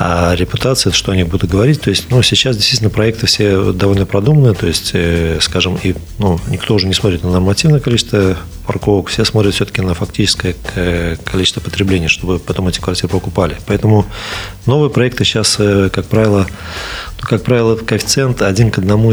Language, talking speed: Russian, 170 wpm